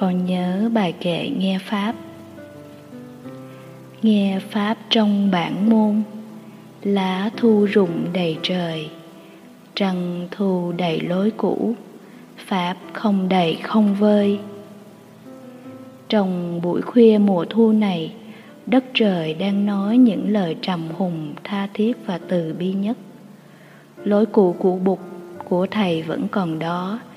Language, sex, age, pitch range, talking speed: Vietnamese, female, 20-39, 180-220 Hz, 120 wpm